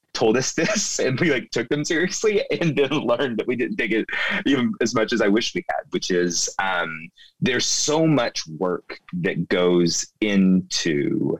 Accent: American